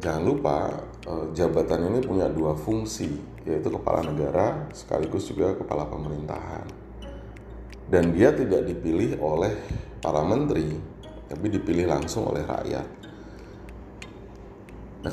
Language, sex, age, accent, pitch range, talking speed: Indonesian, male, 30-49, native, 75-100 Hz, 105 wpm